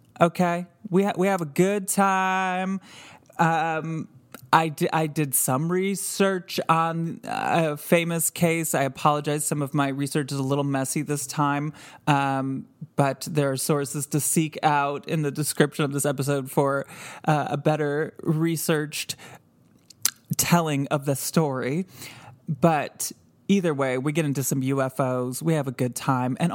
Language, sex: English, male